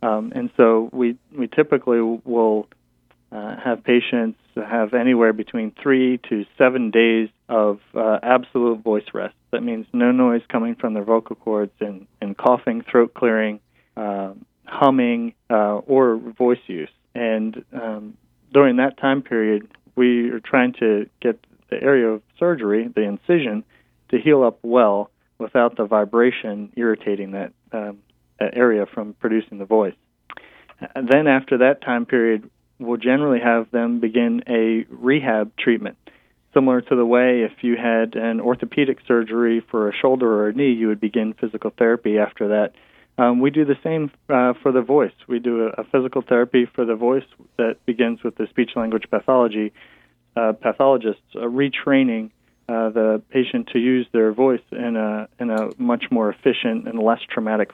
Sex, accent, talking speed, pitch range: male, American, 160 wpm, 110-125 Hz